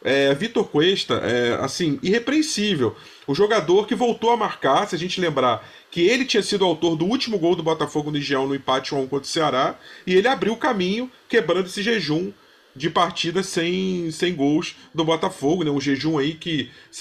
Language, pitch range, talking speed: Portuguese, 150-195 Hz, 195 wpm